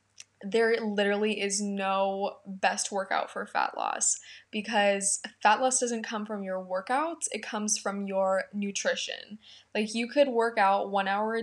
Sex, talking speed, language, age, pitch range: female, 160 wpm, English, 10-29, 195-225 Hz